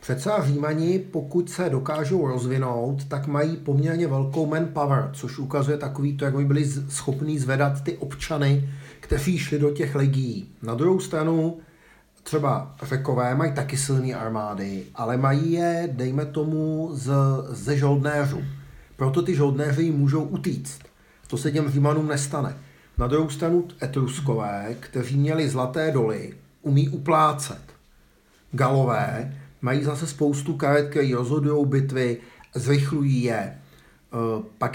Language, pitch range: Czech, 130-155 Hz